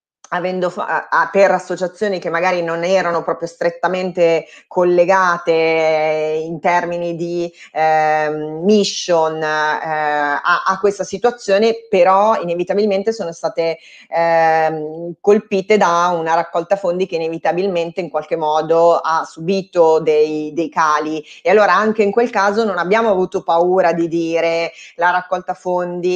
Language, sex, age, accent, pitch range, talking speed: Italian, female, 20-39, native, 165-190 Hz, 135 wpm